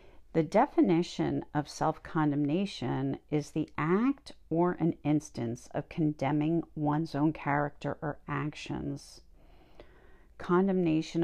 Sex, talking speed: female, 95 wpm